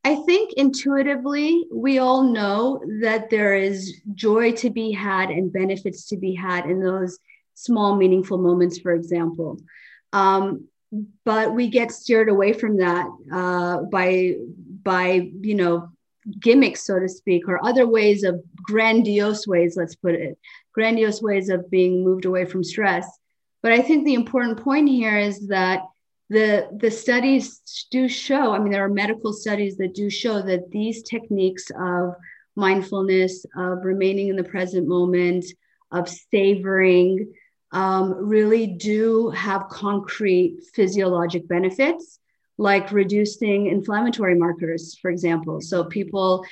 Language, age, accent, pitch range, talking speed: English, 40-59, American, 185-220 Hz, 140 wpm